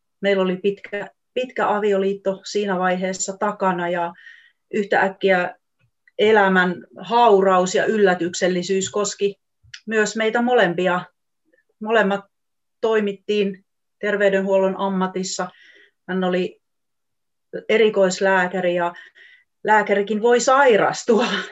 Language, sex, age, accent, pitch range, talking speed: Finnish, female, 30-49, native, 185-230 Hz, 80 wpm